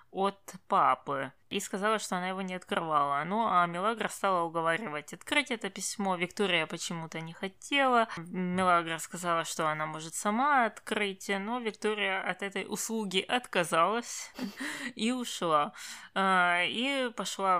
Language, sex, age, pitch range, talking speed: Russian, female, 20-39, 170-210 Hz, 135 wpm